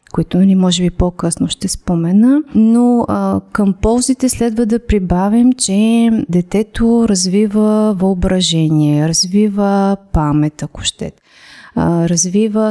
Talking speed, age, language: 115 wpm, 30-49, Bulgarian